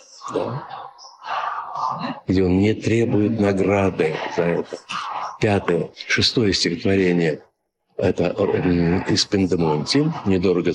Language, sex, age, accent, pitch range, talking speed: Russian, male, 60-79, native, 90-115 Hz, 85 wpm